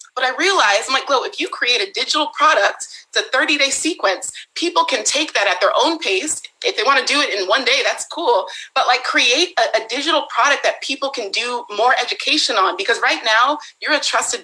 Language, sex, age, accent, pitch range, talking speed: English, female, 30-49, American, 225-310 Hz, 235 wpm